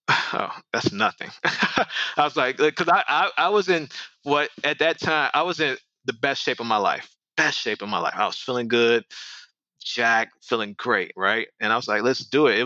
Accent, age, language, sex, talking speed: American, 20-39, English, male, 220 wpm